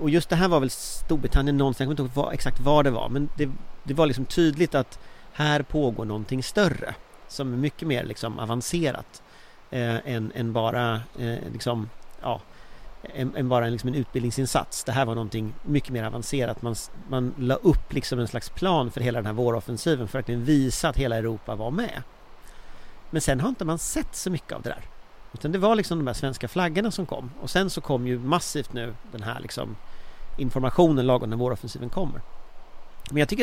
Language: Swedish